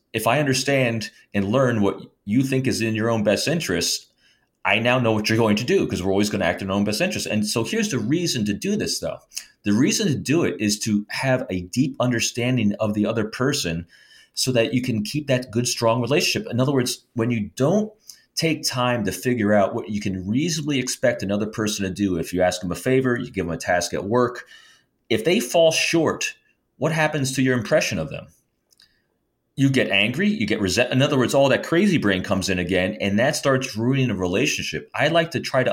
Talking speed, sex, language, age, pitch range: 230 wpm, male, English, 30-49, 105-135 Hz